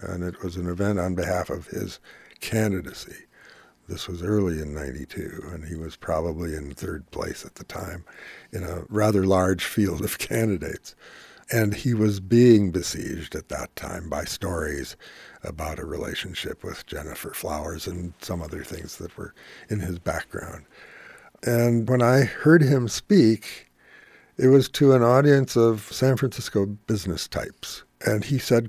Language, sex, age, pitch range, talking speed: English, male, 60-79, 85-110 Hz, 160 wpm